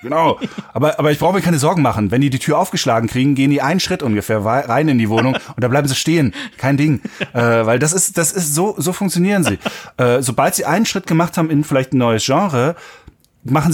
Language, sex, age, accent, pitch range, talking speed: German, male, 30-49, German, 120-155 Hz, 235 wpm